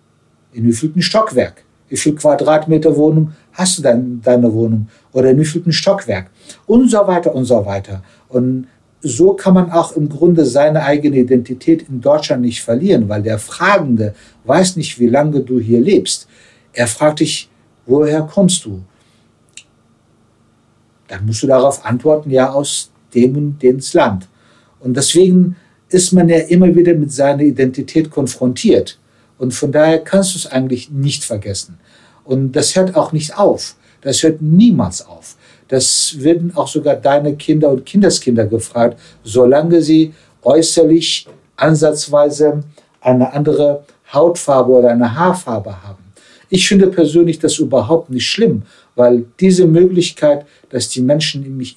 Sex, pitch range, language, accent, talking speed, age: male, 120-160 Hz, German, German, 150 wpm, 60-79